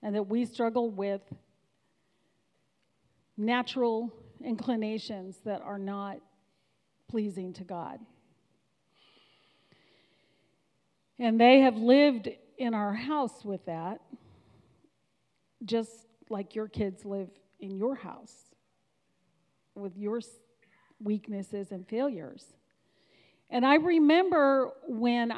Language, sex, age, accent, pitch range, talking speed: English, female, 50-69, American, 195-240 Hz, 90 wpm